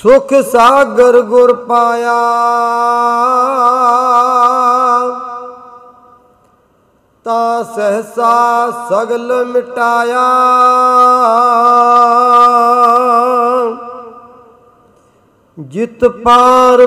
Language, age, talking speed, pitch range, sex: Punjabi, 40-59, 35 wpm, 235-250 Hz, male